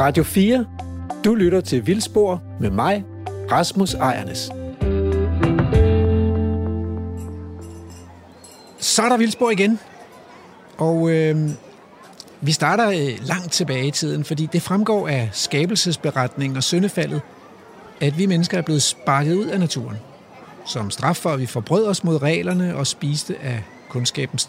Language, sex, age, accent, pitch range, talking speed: Danish, male, 60-79, native, 130-185 Hz, 130 wpm